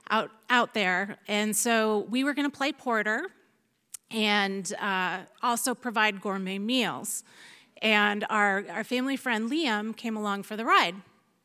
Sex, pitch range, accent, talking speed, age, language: female, 205-250 Hz, American, 145 wpm, 30-49, English